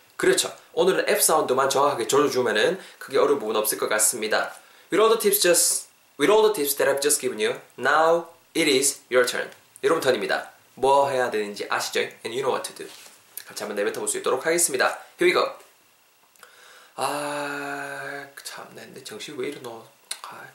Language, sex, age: Korean, male, 20-39